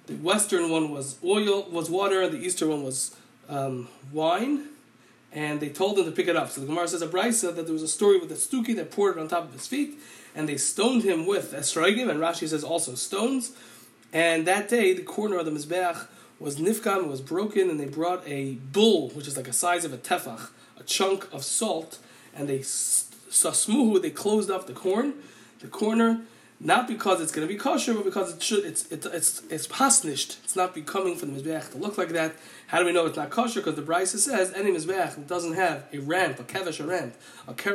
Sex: male